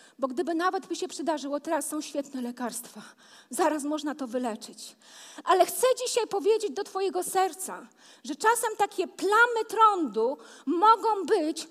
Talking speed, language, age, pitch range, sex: 145 wpm, Polish, 40-59, 270-370 Hz, female